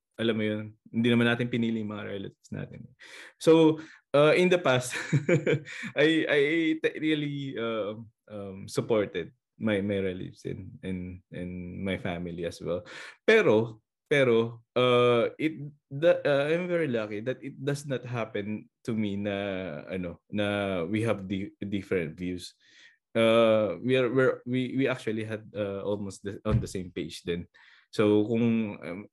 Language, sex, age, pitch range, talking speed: Filipino, male, 20-39, 100-135 Hz, 145 wpm